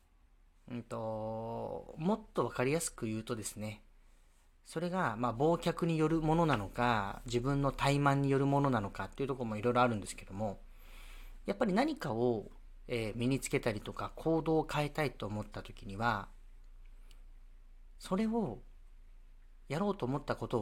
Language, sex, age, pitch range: Japanese, male, 40-59, 105-145 Hz